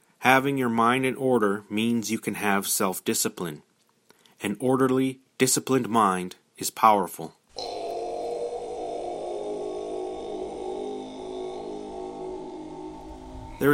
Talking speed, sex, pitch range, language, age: 75 wpm, male, 105-130 Hz, English, 30-49